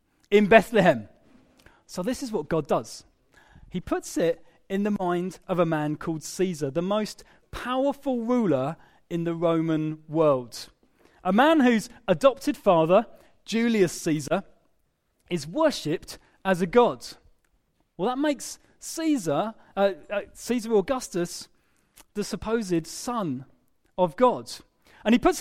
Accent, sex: British, male